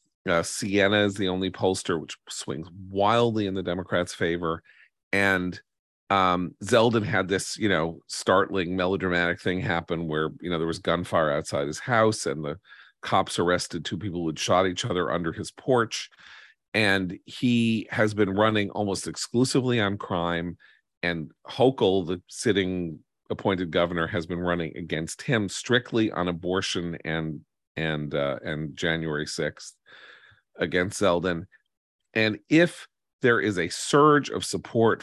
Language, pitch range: English, 80-105 Hz